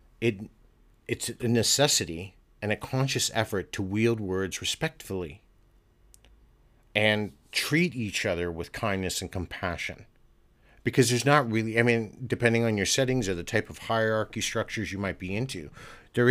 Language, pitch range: English, 95-115 Hz